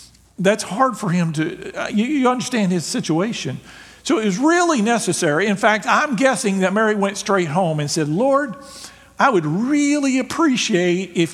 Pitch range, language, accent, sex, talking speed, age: 140-190 Hz, English, American, male, 165 wpm, 50-69